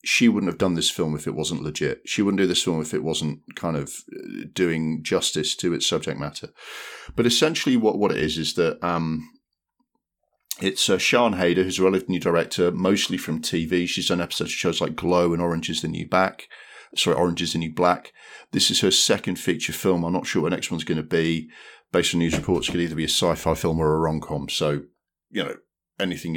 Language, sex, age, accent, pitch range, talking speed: English, male, 40-59, British, 80-90 Hz, 230 wpm